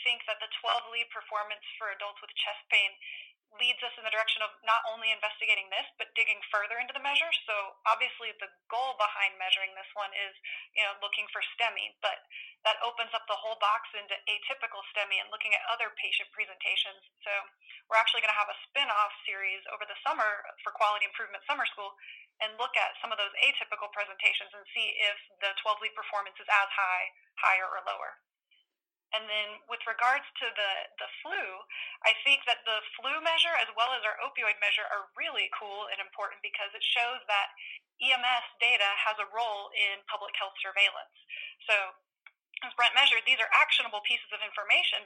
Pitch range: 205-235 Hz